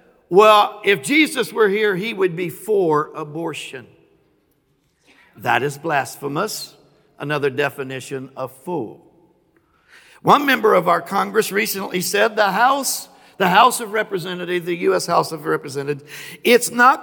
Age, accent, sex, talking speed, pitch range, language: 60-79, American, male, 125 wpm, 140-190 Hz, English